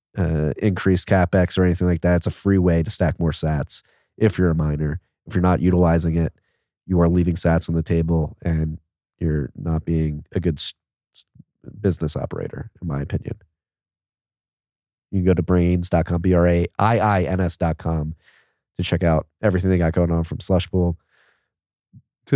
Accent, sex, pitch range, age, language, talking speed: American, male, 85-100 Hz, 30-49, English, 160 wpm